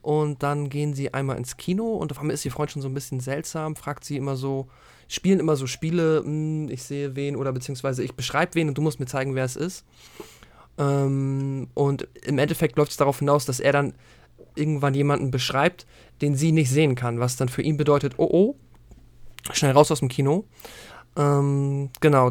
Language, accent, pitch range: German, German, 135-155 Hz